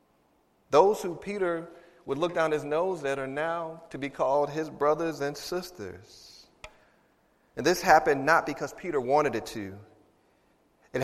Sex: male